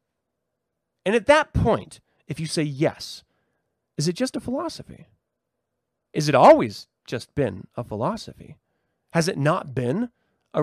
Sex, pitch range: male, 145-210 Hz